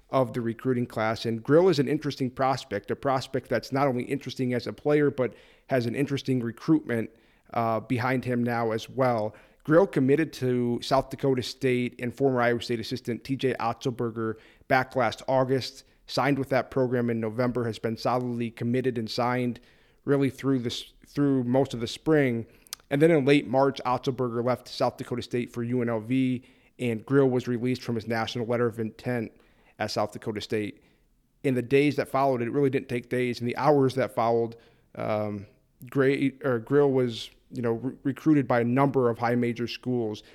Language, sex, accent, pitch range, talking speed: English, male, American, 115-135 Hz, 180 wpm